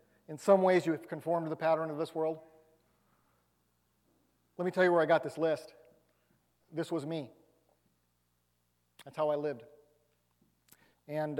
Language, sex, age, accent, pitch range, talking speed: English, male, 40-59, American, 135-185 Hz, 155 wpm